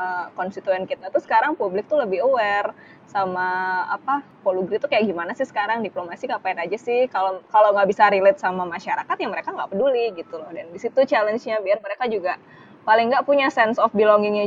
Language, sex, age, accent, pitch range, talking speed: Indonesian, female, 20-39, native, 185-245 Hz, 185 wpm